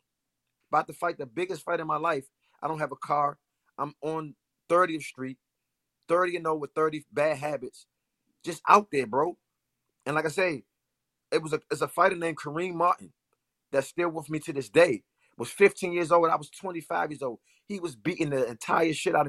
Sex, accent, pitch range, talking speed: male, American, 135-175 Hz, 195 wpm